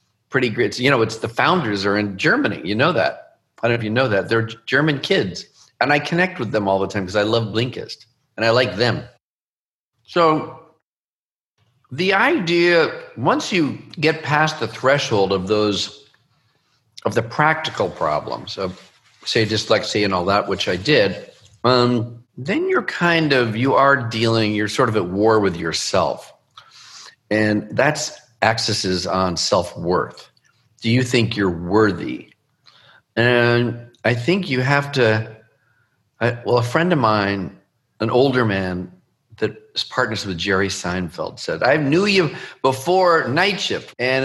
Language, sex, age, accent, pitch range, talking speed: English, male, 50-69, American, 110-155 Hz, 155 wpm